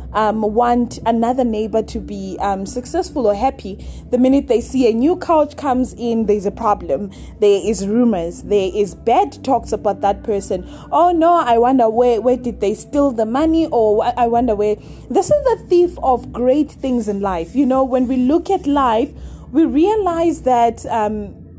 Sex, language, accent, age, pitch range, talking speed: female, English, South African, 20-39, 215-295 Hz, 185 wpm